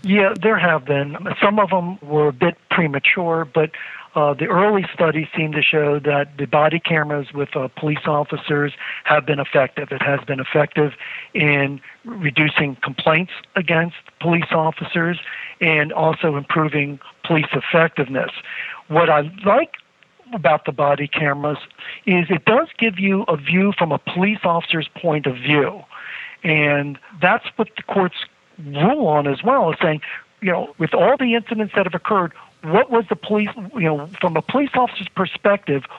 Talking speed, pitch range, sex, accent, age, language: 160 wpm, 150-195 Hz, male, American, 50-69, English